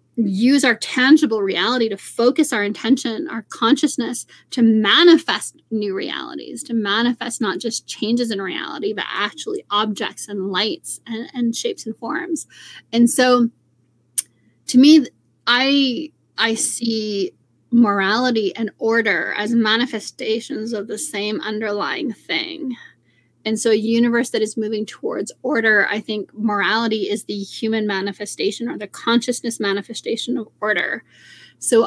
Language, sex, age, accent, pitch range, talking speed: English, female, 20-39, American, 220-250 Hz, 135 wpm